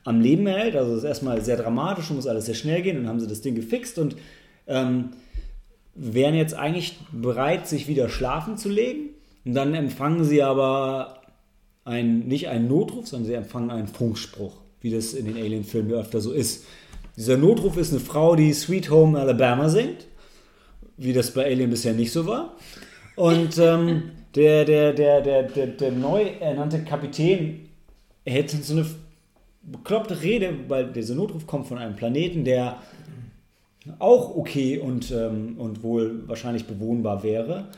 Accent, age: German, 30-49